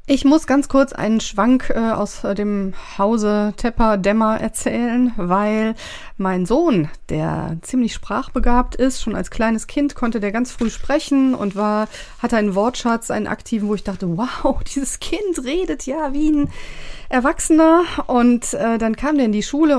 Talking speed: 165 wpm